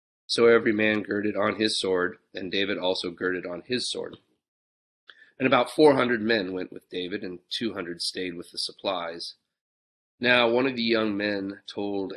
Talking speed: 170 wpm